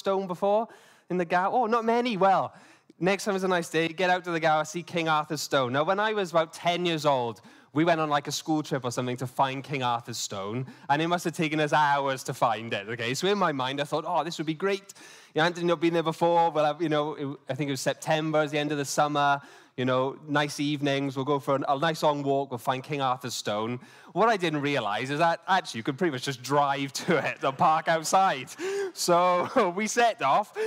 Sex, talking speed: male, 255 wpm